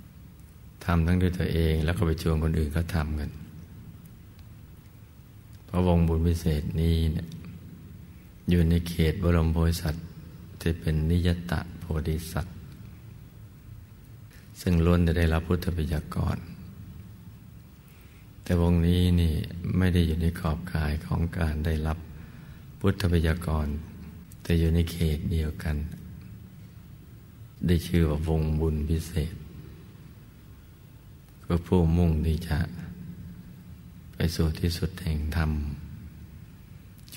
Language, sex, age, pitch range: Thai, male, 60-79, 80-90 Hz